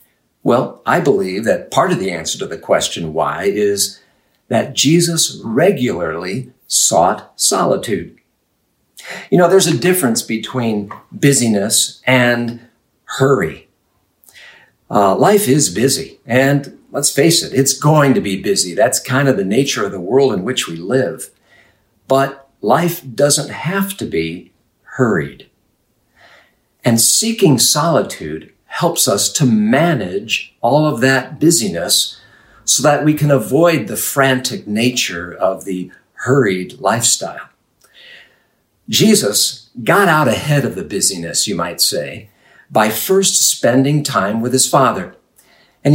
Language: English